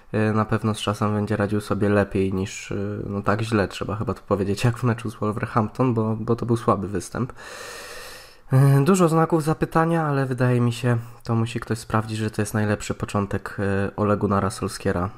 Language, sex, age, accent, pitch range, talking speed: Polish, male, 20-39, native, 95-115 Hz, 180 wpm